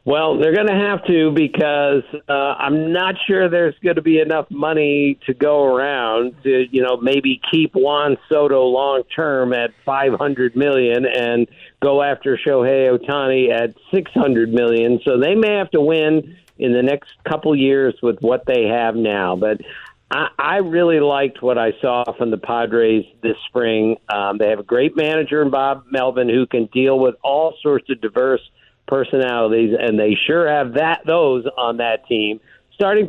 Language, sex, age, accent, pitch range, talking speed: English, male, 50-69, American, 120-155 Hz, 180 wpm